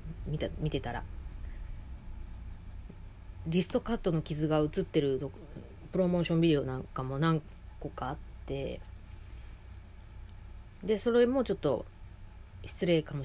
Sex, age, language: female, 30-49, Japanese